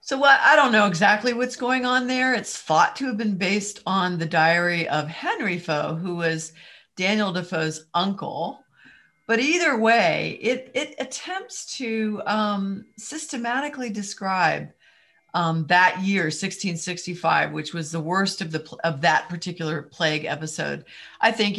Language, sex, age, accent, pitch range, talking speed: English, female, 50-69, American, 165-225 Hz, 150 wpm